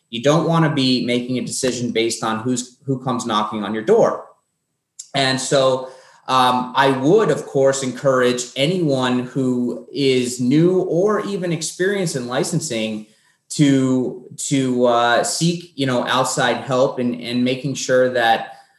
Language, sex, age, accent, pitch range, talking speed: English, male, 30-49, American, 125-150 Hz, 150 wpm